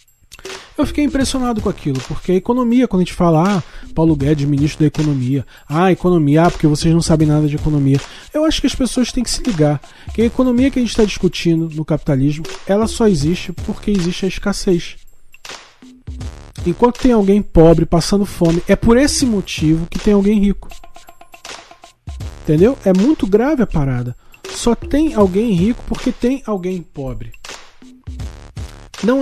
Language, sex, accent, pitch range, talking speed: Portuguese, male, Brazilian, 150-225 Hz, 175 wpm